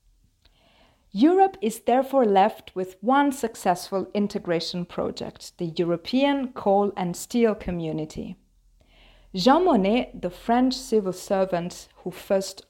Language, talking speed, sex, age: English, 110 wpm, female, 40-59